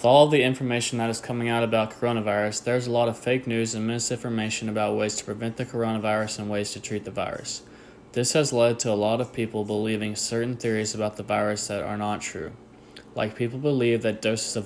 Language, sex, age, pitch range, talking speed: English, male, 20-39, 105-120 Hz, 225 wpm